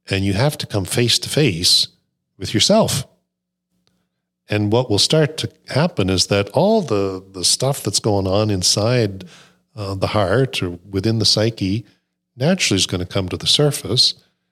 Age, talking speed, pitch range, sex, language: 40-59, 170 wpm, 95-120 Hz, male, English